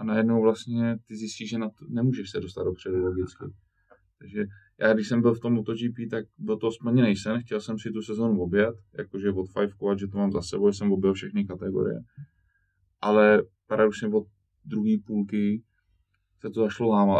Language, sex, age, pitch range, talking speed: Czech, male, 20-39, 100-120 Hz, 185 wpm